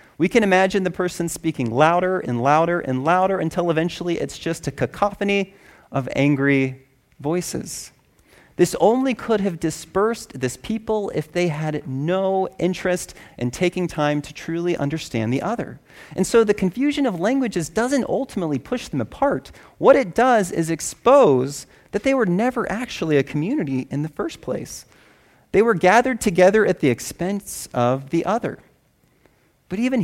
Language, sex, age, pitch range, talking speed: English, male, 30-49, 140-190 Hz, 160 wpm